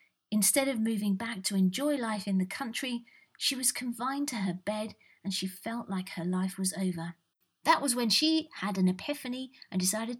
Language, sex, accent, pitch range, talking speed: English, female, British, 190-250 Hz, 195 wpm